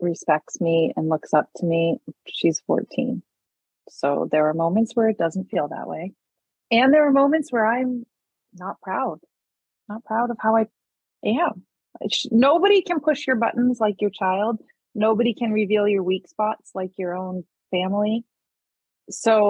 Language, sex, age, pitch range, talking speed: English, female, 30-49, 185-270 Hz, 165 wpm